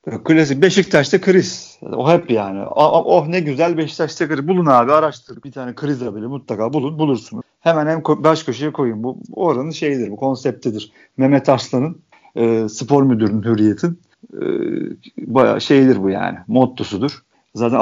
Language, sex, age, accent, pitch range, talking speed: Turkish, male, 50-69, native, 120-155 Hz, 150 wpm